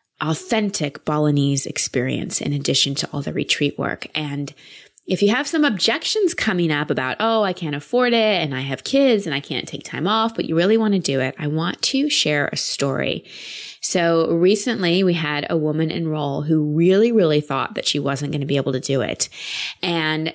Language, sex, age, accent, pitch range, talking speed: English, female, 20-39, American, 150-185 Hz, 205 wpm